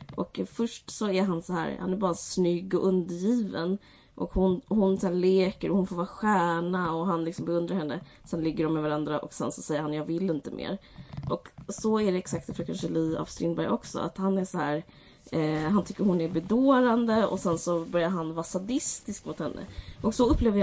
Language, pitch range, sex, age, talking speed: Swedish, 165-200 Hz, female, 20-39, 220 wpm